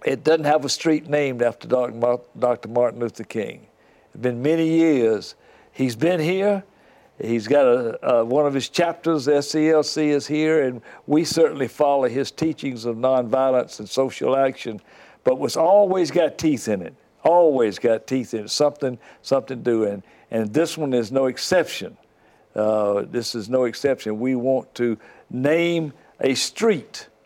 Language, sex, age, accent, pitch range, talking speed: English, male, 60-79, American, 125-175 Hz, 155 wpm